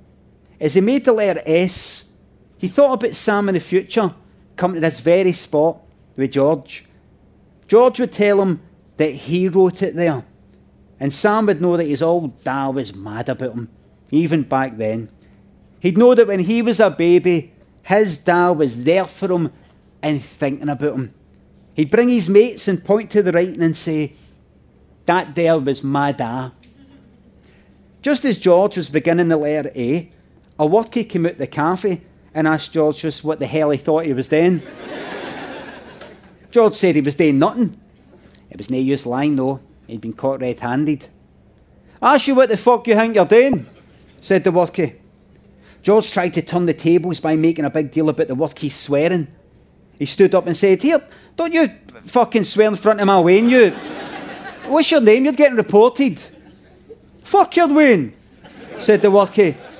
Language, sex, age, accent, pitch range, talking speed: English, male, 40-59, British, 145-205 Hz, 175 wpm